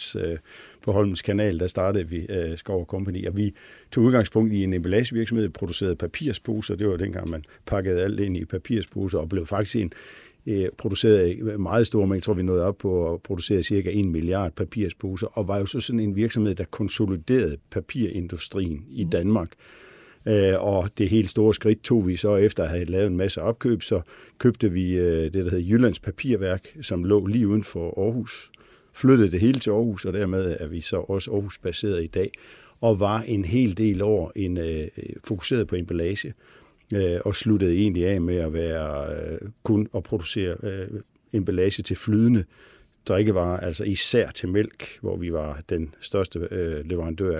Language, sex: Danish, male